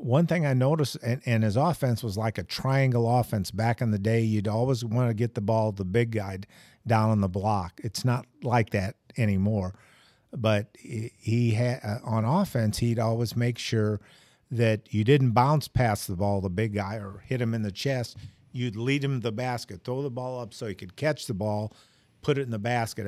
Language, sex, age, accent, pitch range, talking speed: English, male, 50-69, American, 110-130 Hz, 210 wpm